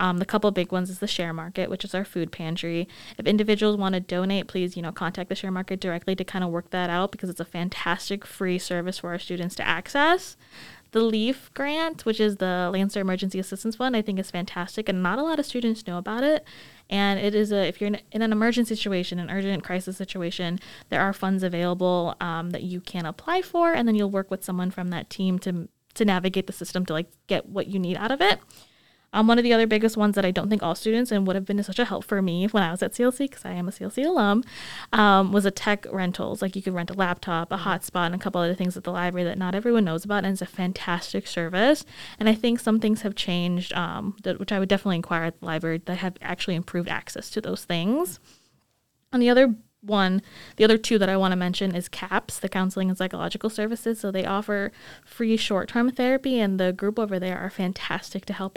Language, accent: English, American